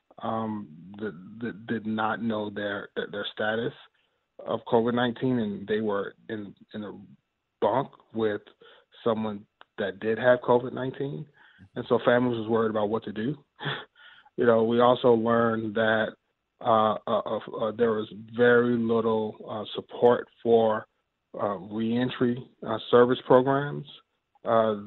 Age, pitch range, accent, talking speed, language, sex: 30-49, 115-130 Hz, American, 130 wpm, English, male